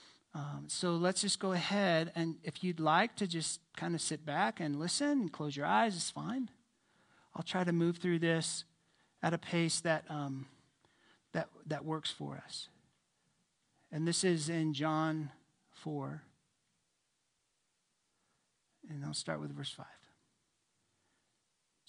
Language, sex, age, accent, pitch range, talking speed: English, male, 50-69, American, 145-175 Hz, 145 wpm